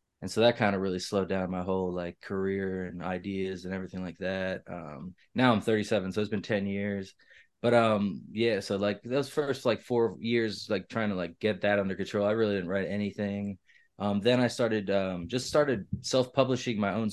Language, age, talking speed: English, 20-39, 210 wpm